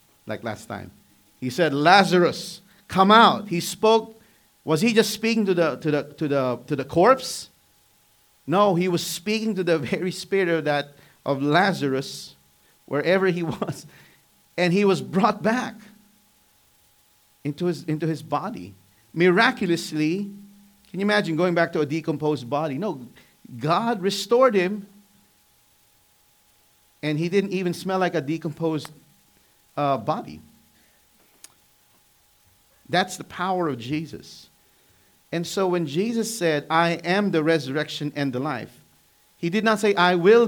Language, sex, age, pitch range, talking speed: English, male, 50-69, 145-200 Hz, 140 wpm